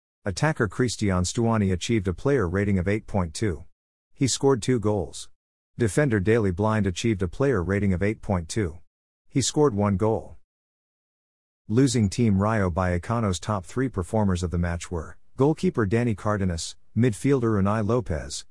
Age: 50-69